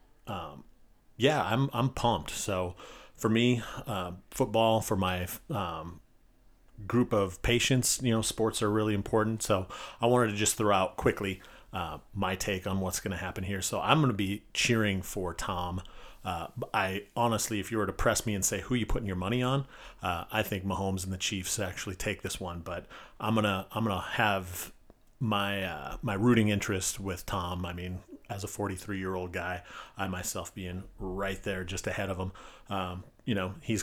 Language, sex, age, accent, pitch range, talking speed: English, male, 30-49, American, 95-110 Hz, 190 wpm